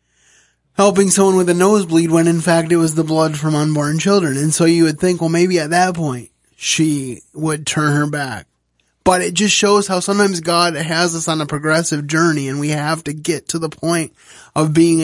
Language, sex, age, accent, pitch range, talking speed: English, male, 20-39, American, 145-170 Hz, 210 wpm